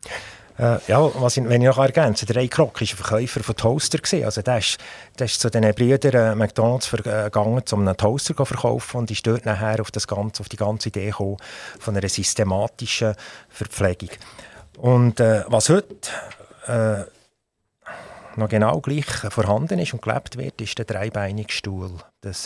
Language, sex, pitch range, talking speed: German, male, 105-130 Hz, 165 wpm